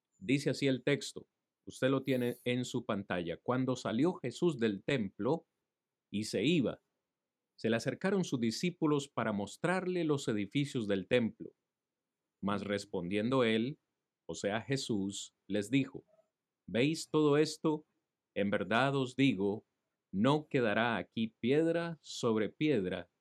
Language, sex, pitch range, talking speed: Spanish, male, 110-145 Hz, 130 wpm